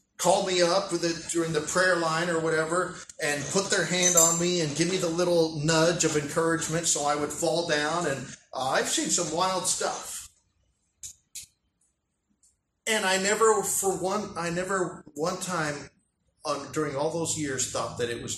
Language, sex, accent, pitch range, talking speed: English, male, American, 130-180 Hz, 175 wpm